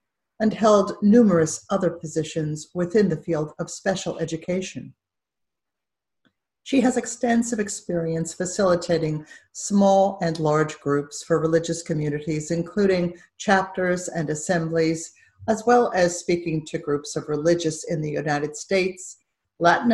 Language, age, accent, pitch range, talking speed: English, 50-69, American, 155-190 Hz, 120 wpm